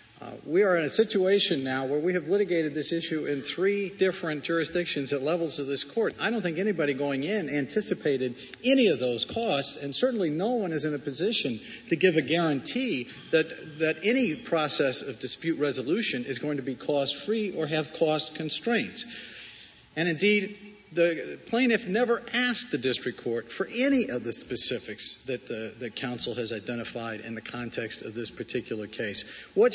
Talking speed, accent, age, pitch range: 180 wpm, American, 50-69, 145-230 Hz